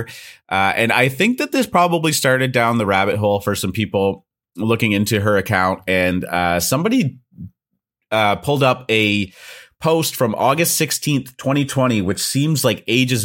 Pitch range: 95-115 Hz